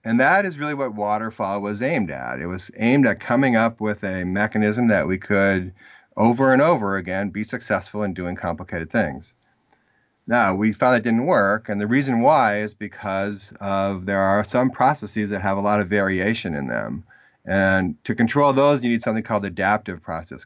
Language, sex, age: English, male, 40-59